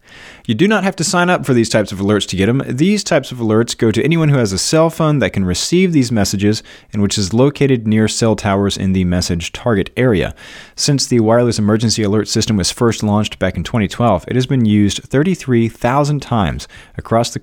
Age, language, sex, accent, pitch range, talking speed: 30-49, English, male, American, 95-125 Hz, 220 wpm